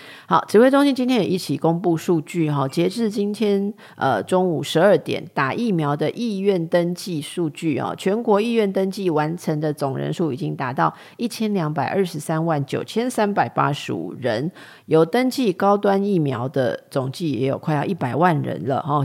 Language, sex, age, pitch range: Chinese, female, 40-59, 145-195 Hz